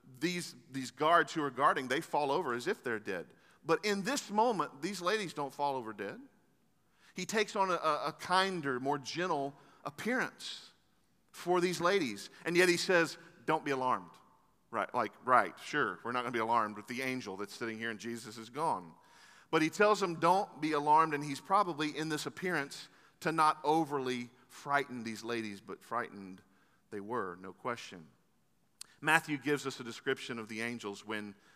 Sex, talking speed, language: male, 185 wpm, English